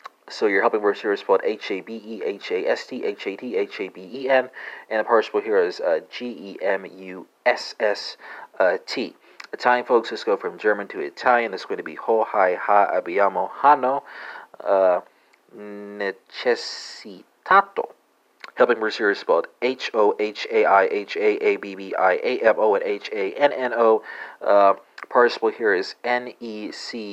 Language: English